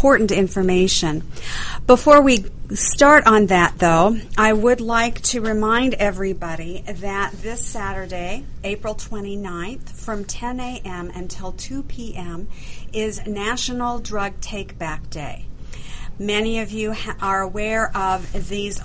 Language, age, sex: English, 50-69, female